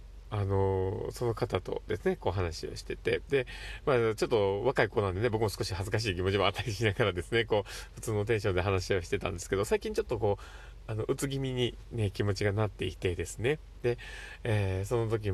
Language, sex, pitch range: Japanese, male, 95-115 Hz